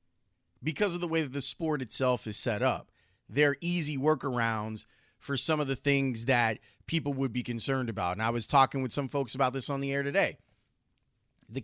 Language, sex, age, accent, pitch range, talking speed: English, male, 30-49, American, 125-165 Hz, 200 wpm